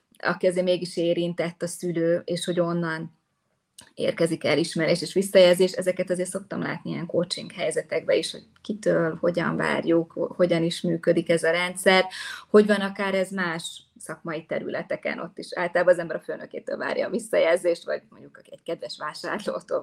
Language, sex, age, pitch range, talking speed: Hungarian, female, 20-39, 165-190 Hz, 165 wpm